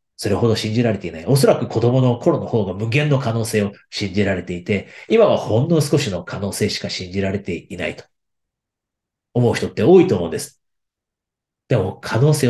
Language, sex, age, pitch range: Japanese, male, 40-59, 100-130 Hz